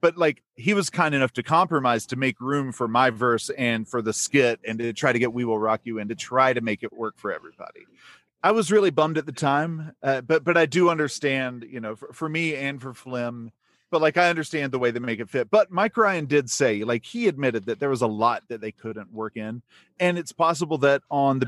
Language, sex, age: English, male, 30-49